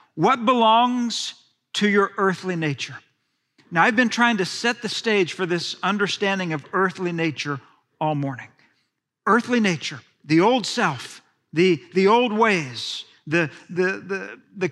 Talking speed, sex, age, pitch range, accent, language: 145 wpm, male, 50-69, 175-245 Hz, American, English